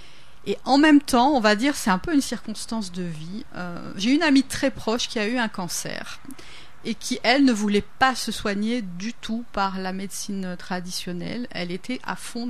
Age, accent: 40-59, French